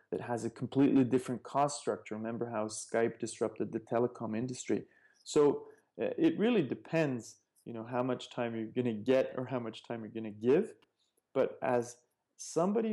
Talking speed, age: 180 wpm, 30-49